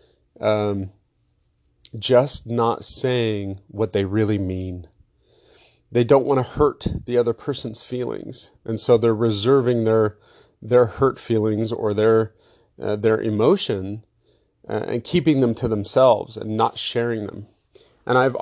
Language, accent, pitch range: English, American, 105-125 Hz